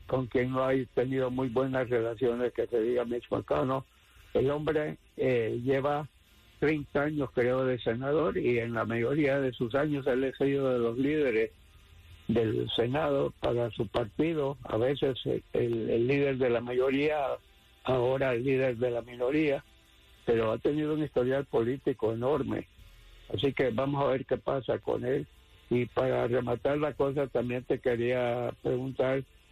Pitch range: 120-140 Hz